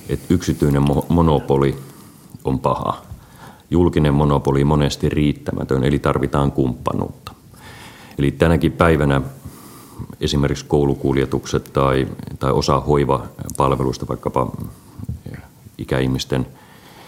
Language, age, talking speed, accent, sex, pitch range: Finnish, 30-49, 85 wpm, native, male, 65-75 Hz